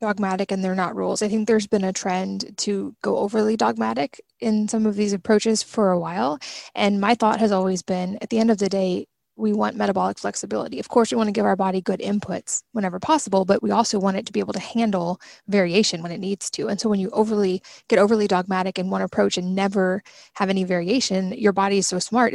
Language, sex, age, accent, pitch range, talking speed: English, female, 20-39, American, 190-220 Hz, 235 wpm